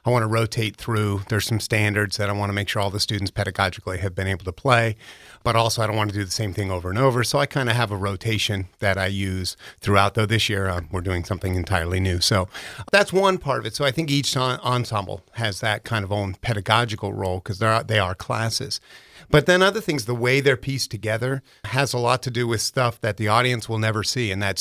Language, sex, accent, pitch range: English, male, American, 100-120 Hz